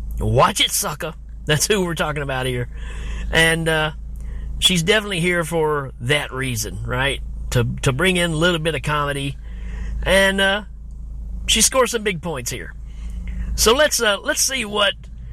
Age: 50-69